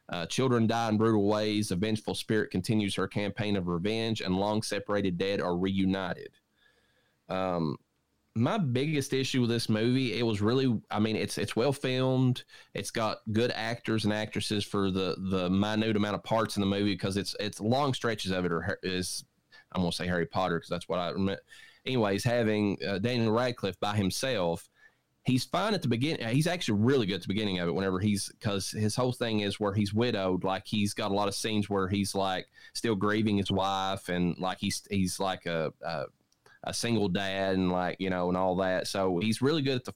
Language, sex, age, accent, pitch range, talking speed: English, male, 30-49, American, 95-115 Hz, 205 wpm